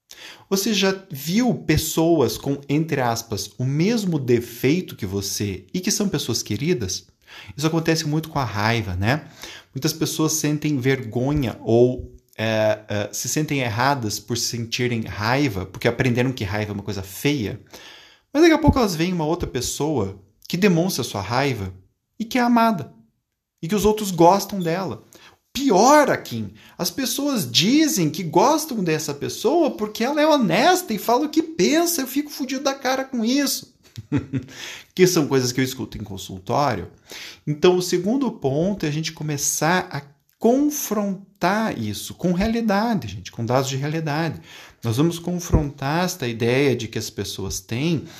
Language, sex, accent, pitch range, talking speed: Portuguese, male, Brazilian, 120-185 Hz, 160 wpm